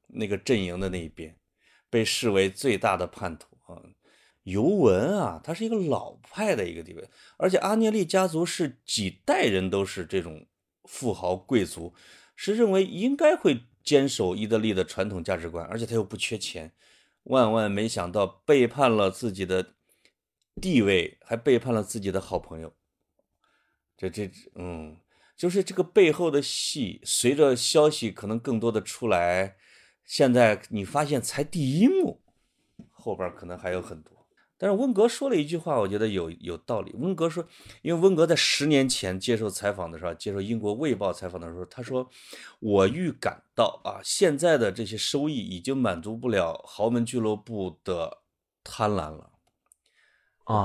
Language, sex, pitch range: Chinese, male, 95-135 Hz